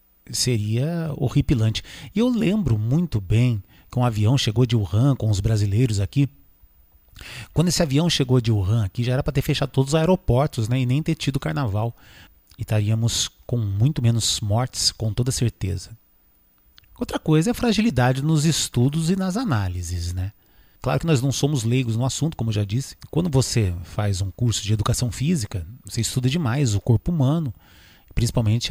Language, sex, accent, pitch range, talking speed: English, male, Brazilian, 105-140 Hz, 180 wpm